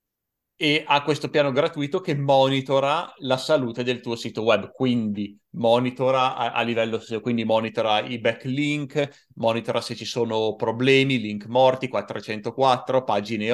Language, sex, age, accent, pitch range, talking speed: Italian, male, 30-49, native, 115-150 Hz, 135 wpm